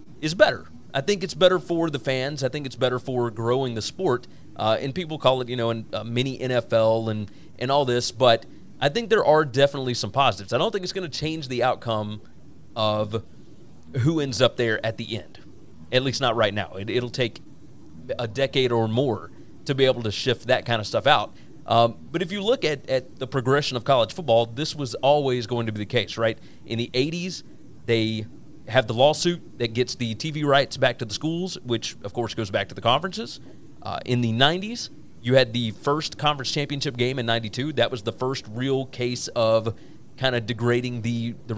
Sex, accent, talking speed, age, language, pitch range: male, American, 210 wpm, 30-49, English, 115-145 Hz